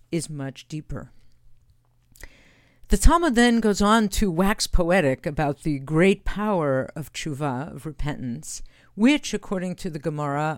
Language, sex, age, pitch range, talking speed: English, female, 50-69, 140-195 Hz, 135 wpm